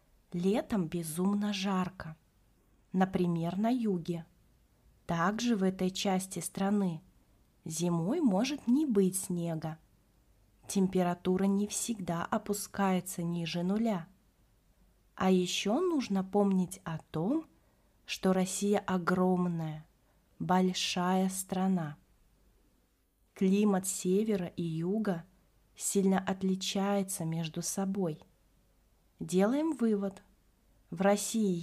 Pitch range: 175-205 Hz